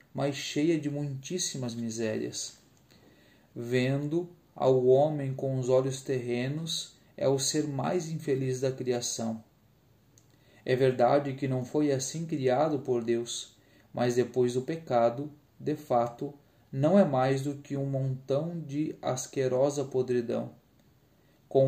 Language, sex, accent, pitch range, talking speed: Portuguese, male, Brazilian, 125-145 Hz, 125 wpm